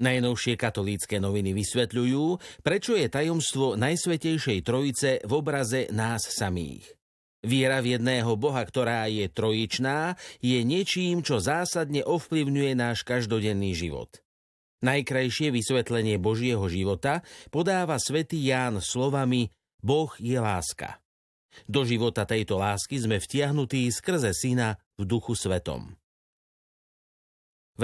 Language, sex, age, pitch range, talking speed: Slovak, male, 50-69, 110-140 Hz, 110 wpm